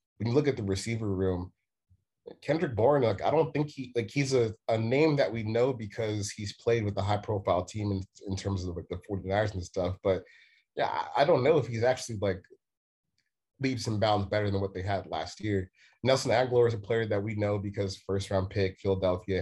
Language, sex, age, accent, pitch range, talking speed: English, male, 30-49, American, 95-115 Hz, 210 wpm